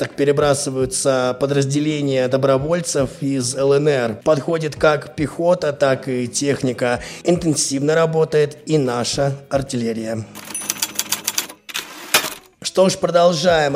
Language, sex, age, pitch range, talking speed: Russian, male, 20-39, 135-160 Hz, 85 wpm